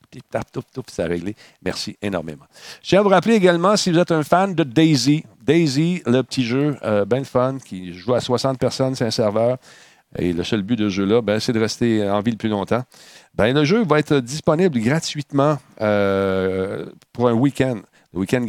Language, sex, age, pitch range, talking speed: French, male, 50-69, 105-135 Hz, 200 wpm